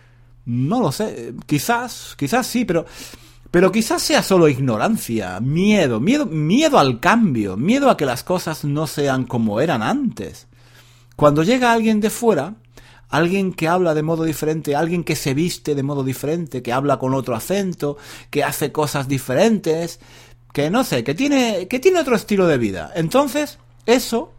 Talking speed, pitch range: 165 wpm, 120-190 Hz